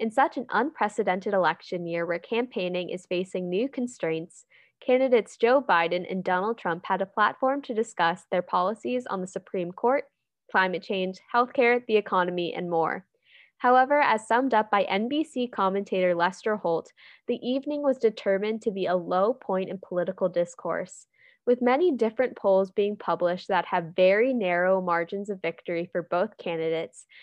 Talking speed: 160 wpm